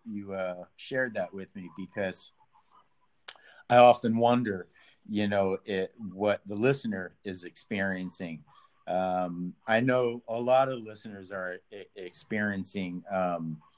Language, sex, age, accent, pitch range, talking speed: English, male, 50-69, American, 95-135 Hz, 120 wpm